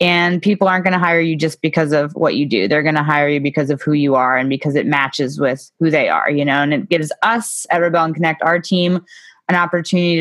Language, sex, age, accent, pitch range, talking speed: English, female, 20-39, American, 155-185 Hz, 255 wpm